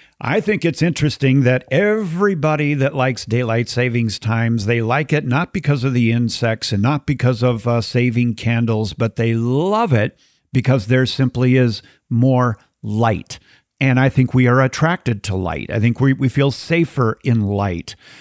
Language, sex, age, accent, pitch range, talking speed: English, male, 50-69, American, 115-140 Hz, 170 wpm